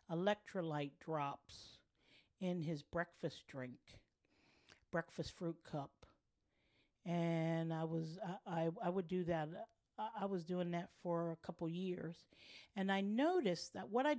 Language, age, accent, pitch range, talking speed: English, 50-69, American, 155-195 Hz, 135 wpm